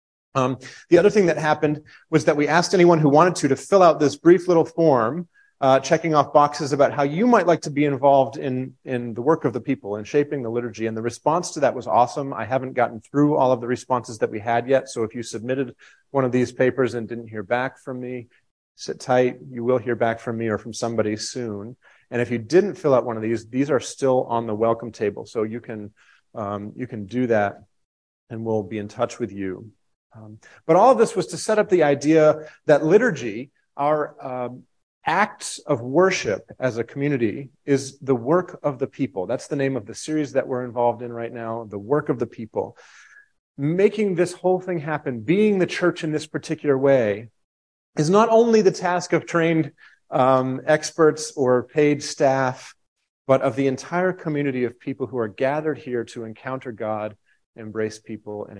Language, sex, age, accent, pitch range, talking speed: English, male, 30-49, American, 115-155 Hz, 210 wpm